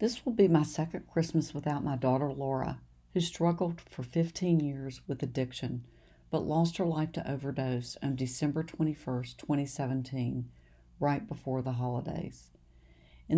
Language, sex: English, female